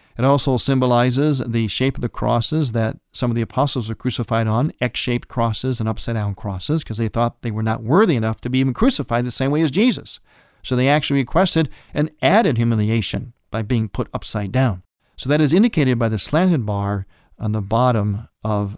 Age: 40-59